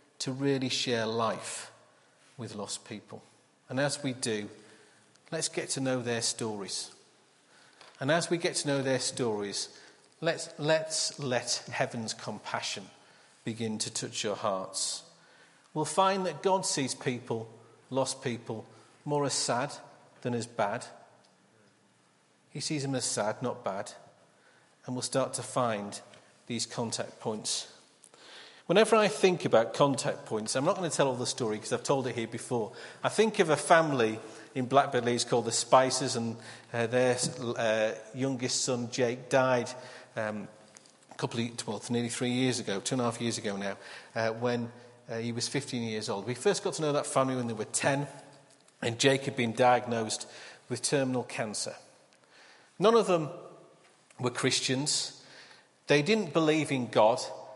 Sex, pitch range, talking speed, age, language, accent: male, 115-140 Hz, 165 wpm, 40-59, English, British